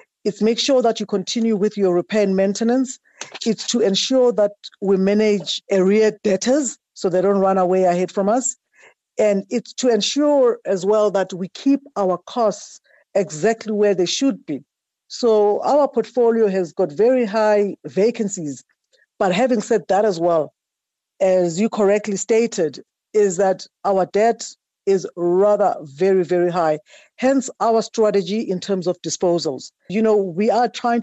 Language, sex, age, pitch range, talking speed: English, female, 50-69, 185-225 Hz, 160 wpm